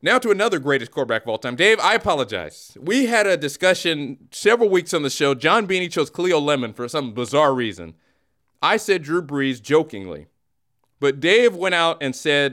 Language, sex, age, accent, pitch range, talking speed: English, male, 30-49, American, 130-180 Hz, 190 wpm